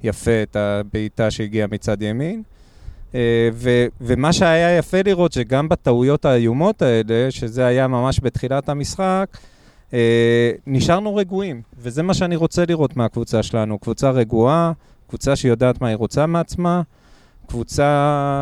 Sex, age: male, 30-49